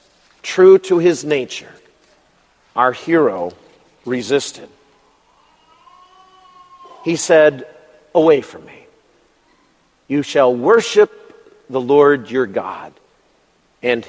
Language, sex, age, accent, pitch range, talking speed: English, male, 50-69, American, 145-235 Hz, 85 wpm